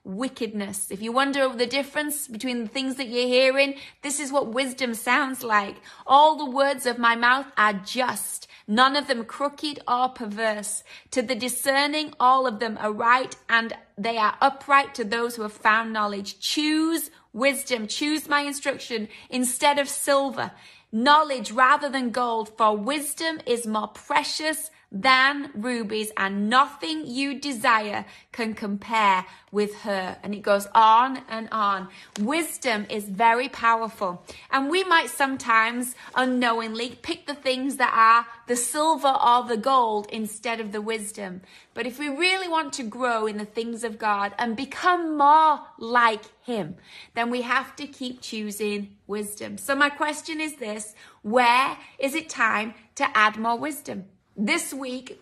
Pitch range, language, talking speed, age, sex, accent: 220-280 Hz, English, 160 wpm, 30-49, female, British